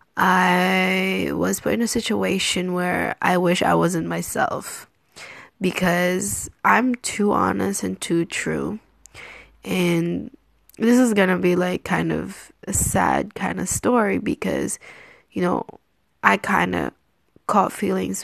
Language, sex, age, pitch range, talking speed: English, female, 10-29, 140-220 Hz, 135 wpm